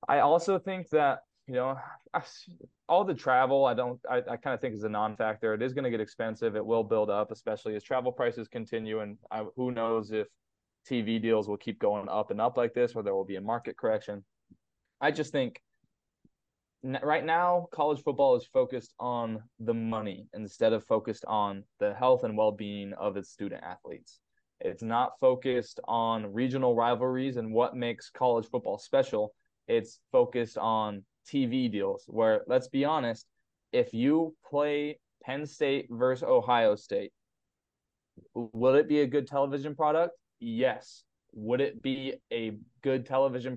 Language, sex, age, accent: English, male, 20-39, American